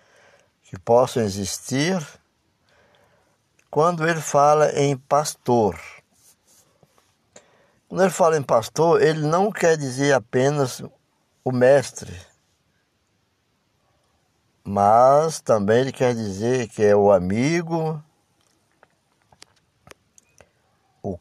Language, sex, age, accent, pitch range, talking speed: Portuguese, male, 60-79, Brazilian, 110-155 Hz, 85 wpm